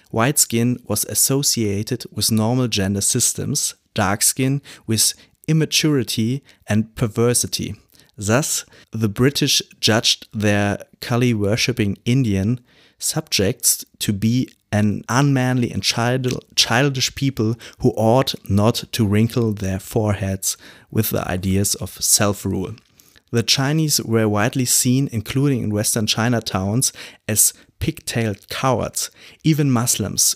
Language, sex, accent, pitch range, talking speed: German, male, German, 105-125 Hz, 110 wpm